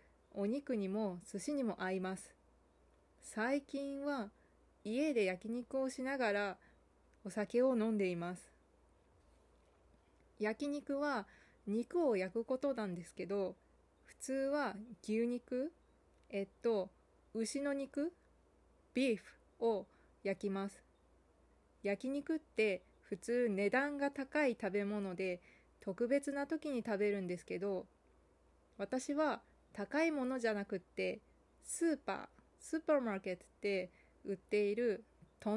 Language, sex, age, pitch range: Japanese, female, 20-39, 180-255 Hz